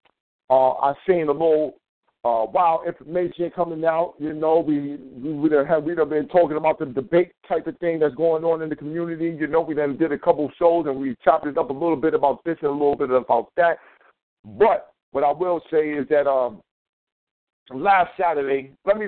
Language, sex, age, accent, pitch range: Japanese, male, 50-69, American, 140-170 Hz